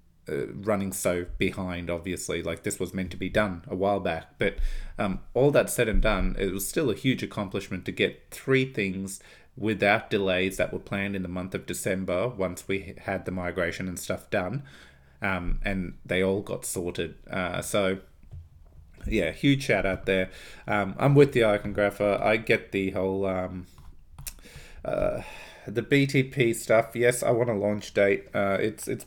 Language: English